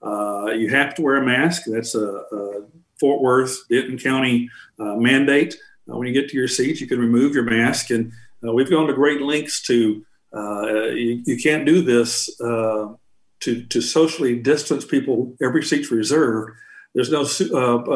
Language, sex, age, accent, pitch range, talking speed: English, male, 50-69, American, 115-140 Hz, 185 wpm